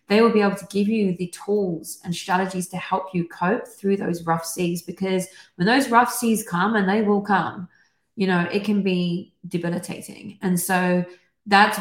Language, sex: English, female